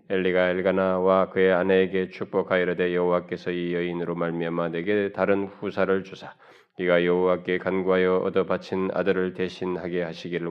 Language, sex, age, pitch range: Korean, male, 20-39, 90-95 Hz